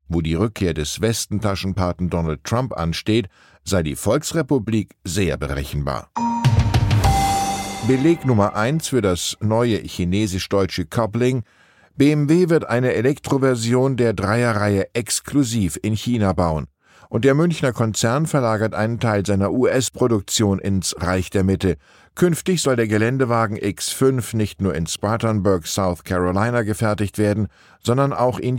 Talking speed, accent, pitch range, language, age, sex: 125 wpm, German, 95-125 Hz, German, 10-29, male